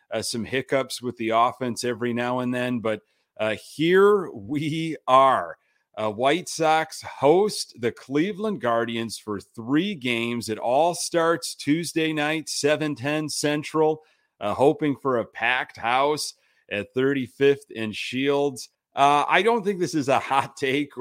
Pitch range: 115-145 Hz